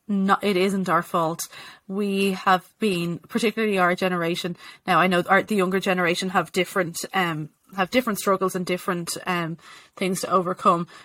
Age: 20-39